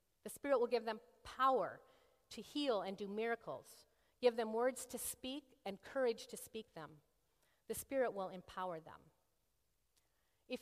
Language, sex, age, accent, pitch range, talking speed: English, female, 40-59, American, 190-245 Hz, 155 wpm